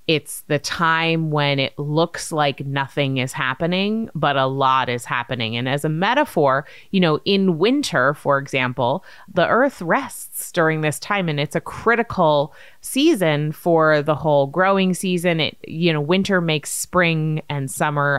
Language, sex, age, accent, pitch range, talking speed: English, female, 20-39, American, 130-170 Hz, 160 wpm